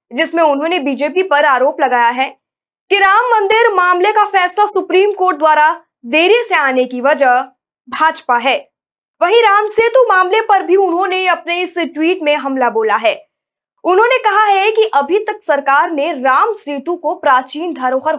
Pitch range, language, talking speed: 280-390 Hz, Hindi, 165 wpm